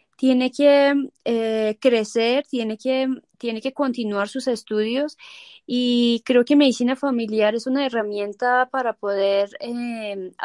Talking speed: 125 wpm